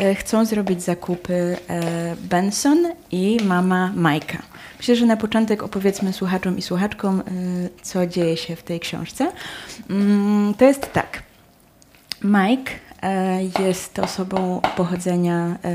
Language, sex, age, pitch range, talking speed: Polish, female, 20-39, 180-215 Hz, 105 wpm